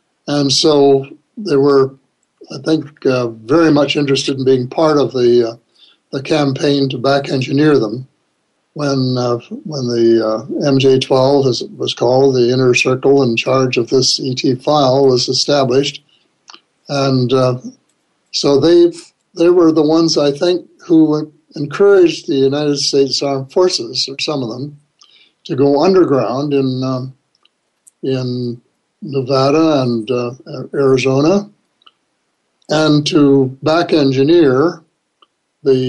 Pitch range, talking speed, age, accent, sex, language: 130-150 Hz, 130 wpm, 60-79, American, male, English